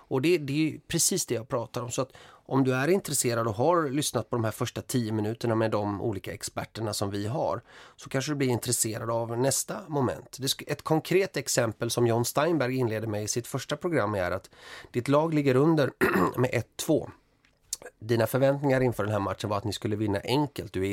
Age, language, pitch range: 30-49, English, 115-145 Hz